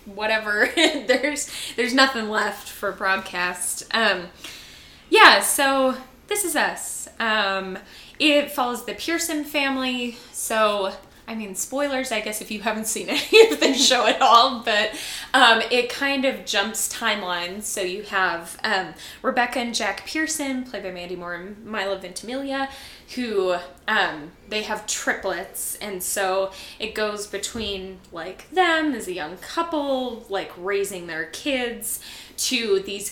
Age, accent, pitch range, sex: 10-29, American, 190-250 Hz, female